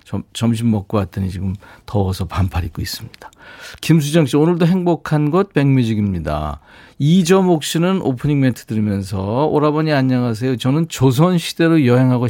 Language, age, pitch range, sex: Korean, 40-59, 105-150 Hz, male